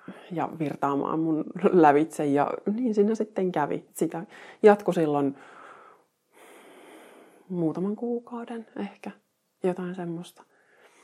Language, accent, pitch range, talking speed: Finnish, native, 150-195 Hz, 90 wpm